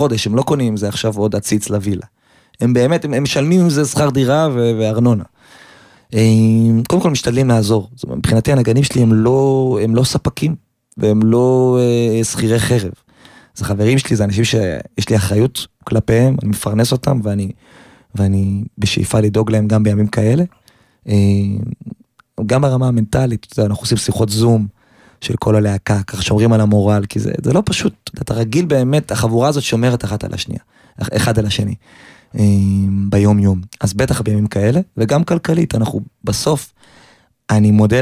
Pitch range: 105-130 Hz